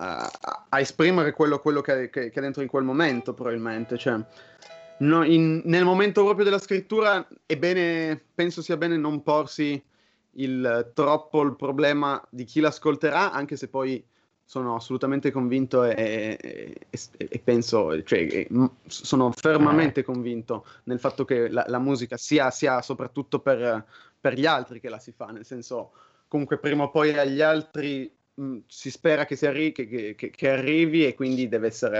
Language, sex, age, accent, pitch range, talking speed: Italian, male, 30-49, native, 125-155 Hz, 170 wpm